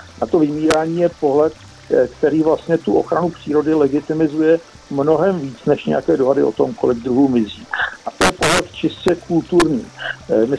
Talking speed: 160 wpm